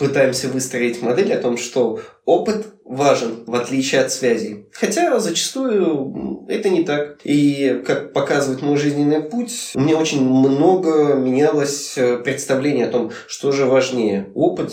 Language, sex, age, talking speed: Russian, male, 20-39, 140 wpm